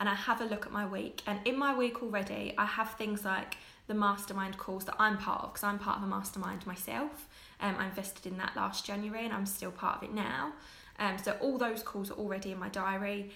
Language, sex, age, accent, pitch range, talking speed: English, female, 10-29, British, 195-235 Hz, 255 wpm